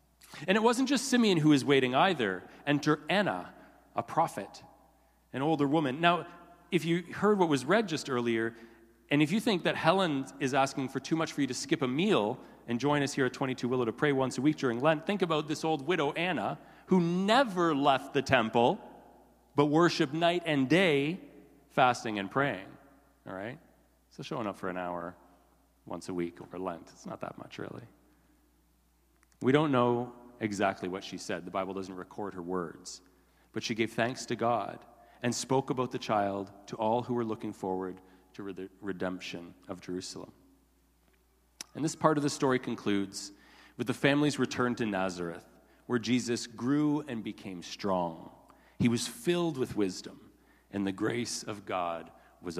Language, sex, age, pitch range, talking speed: English, male, 40-59, 95-150 Hz, 180 wpm